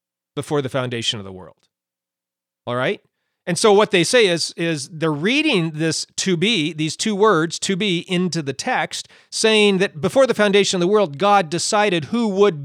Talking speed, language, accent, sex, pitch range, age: 190 wpm, English, American, male, 135-215 Hz, 40-59